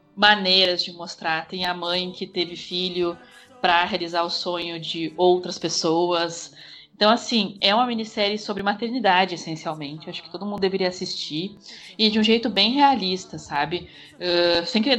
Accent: Brazilian